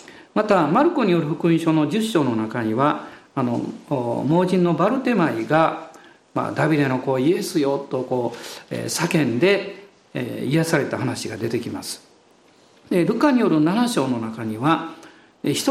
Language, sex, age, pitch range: Japanese, male, 50-69, 150-235 Hz